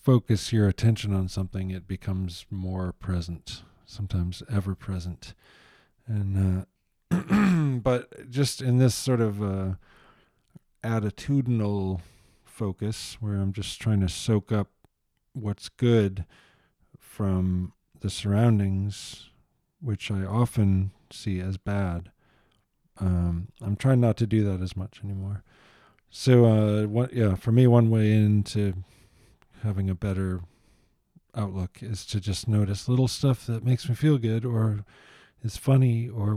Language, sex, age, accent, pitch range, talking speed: English, male, 40-59, American, 95-120 Hz, 130 wpm